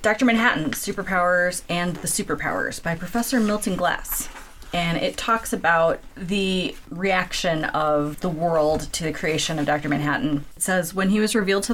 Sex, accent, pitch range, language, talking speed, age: female, American, 155-180 Hz, English, 165 wpm, 30-49